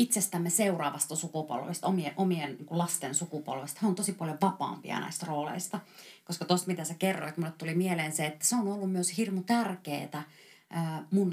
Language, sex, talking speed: Finnish, female, 170 wpm